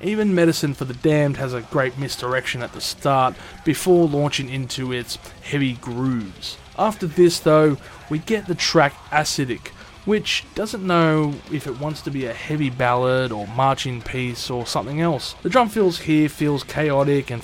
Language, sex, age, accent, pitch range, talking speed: English, male, 20-39, Australian, 125-160 Hz, 170 wpm